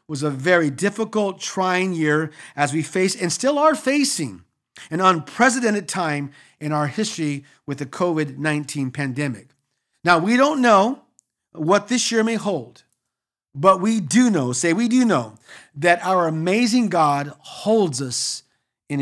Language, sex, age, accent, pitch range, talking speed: English, male, 50-69, American, 155-220 Hz, 150 wpm